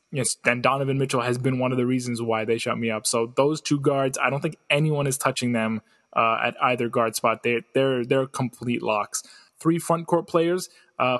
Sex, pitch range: male, 125-155 Hz